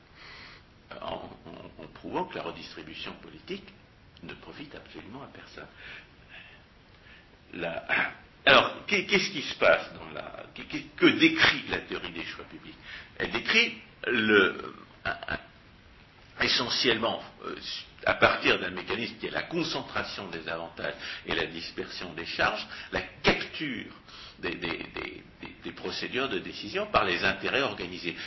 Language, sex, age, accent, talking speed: French, male, 60-79, French, 125 wpm